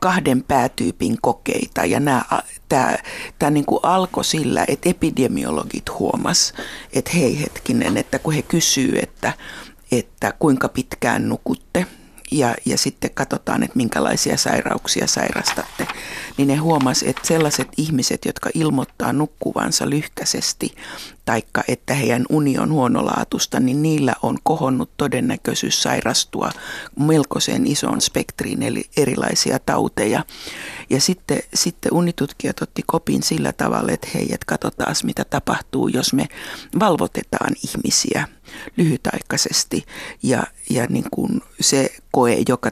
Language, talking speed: Finnish, 120 wpm